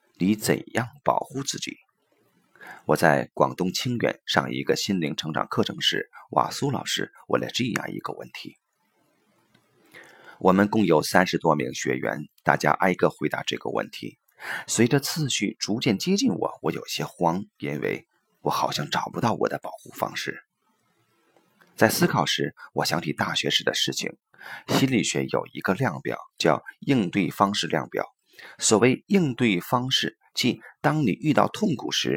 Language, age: Chinese, 30-49